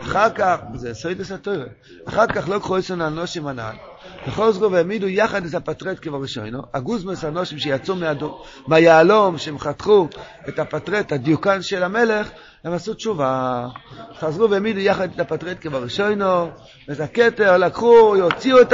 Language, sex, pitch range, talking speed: Hebrew, male, 135-200 Hz, 150 wpm